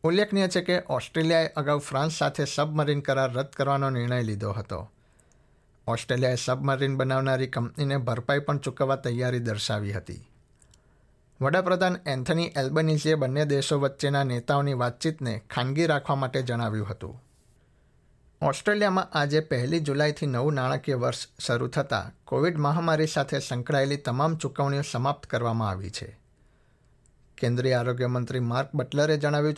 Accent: native